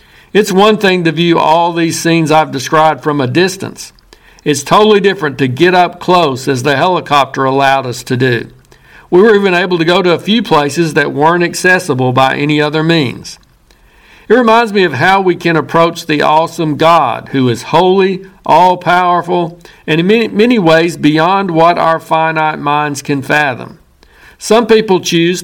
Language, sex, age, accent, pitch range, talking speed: English, male, 60-79, American, 155-185 Hz, 175 wpm